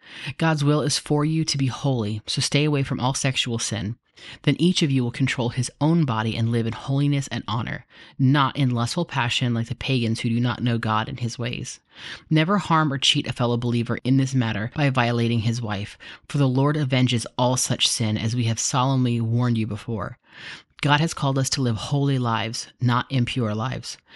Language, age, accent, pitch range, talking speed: English, 30-49, American, 115-140 Hz, 210 wpm